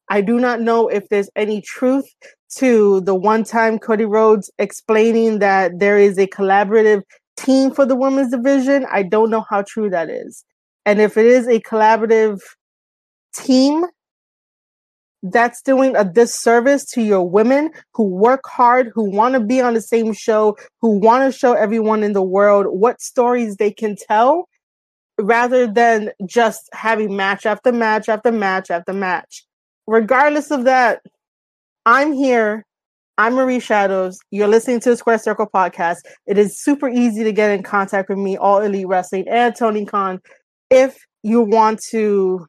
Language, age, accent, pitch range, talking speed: English, 20-39, American, 205-245 Hz, 160 wpm